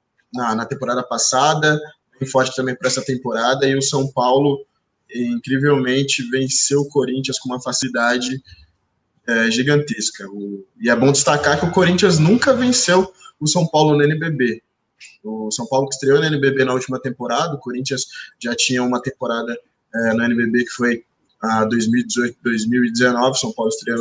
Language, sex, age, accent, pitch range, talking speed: Portuguese, male, 20-39, Brazilian, 120-145 Hz, 160 wpm